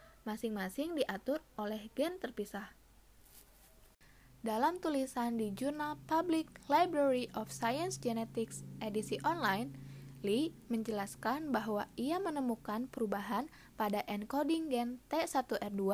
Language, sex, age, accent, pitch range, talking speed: Indonesian, female, 10-29, native, 215-285 Hz, 100 wpm